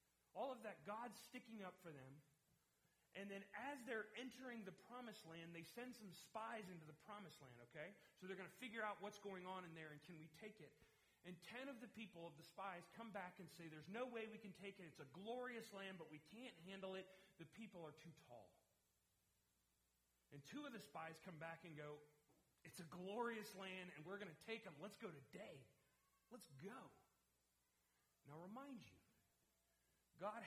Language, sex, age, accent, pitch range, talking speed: English, male, 40-59, American, 155-225 Hz, 205 wpm